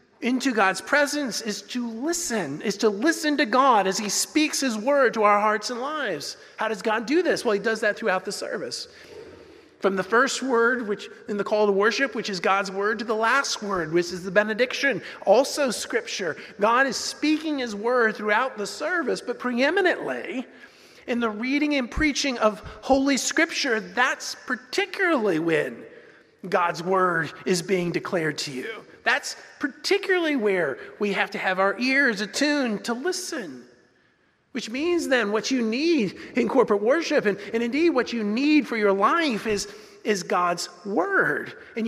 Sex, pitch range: male, 210-280 Hz